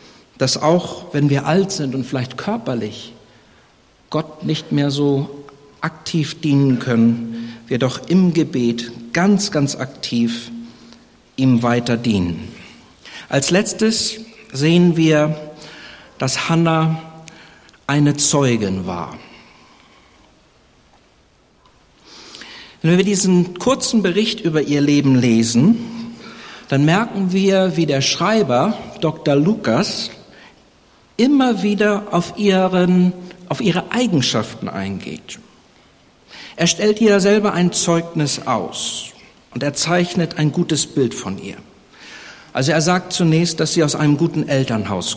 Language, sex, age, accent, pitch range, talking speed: German, male, 60-79, German, 130-180 Hz, 110 wpm